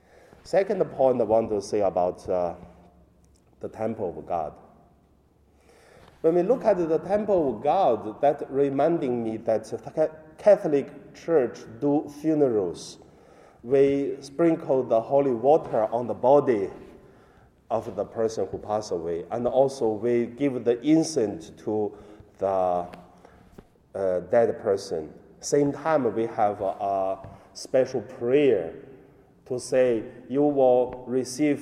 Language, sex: Chinese, male